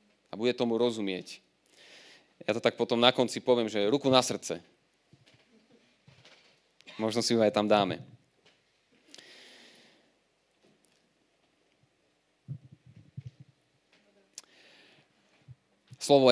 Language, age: Slovak, 30-49